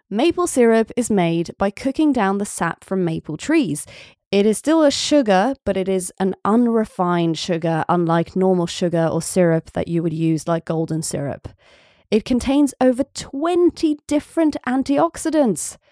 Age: 20-39